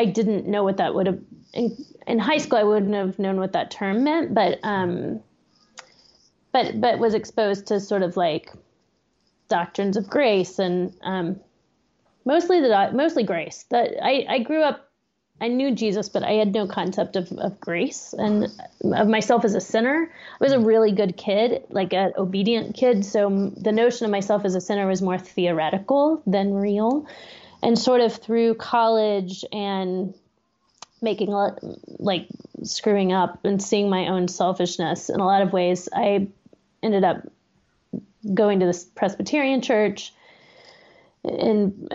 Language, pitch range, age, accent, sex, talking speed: English, 190-230 Hz, 30-49, American, female, 160 wpm